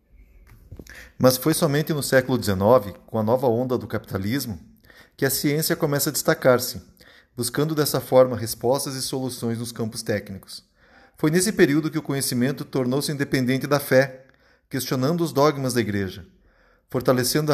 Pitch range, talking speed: 120-155 Hz, 145 wpm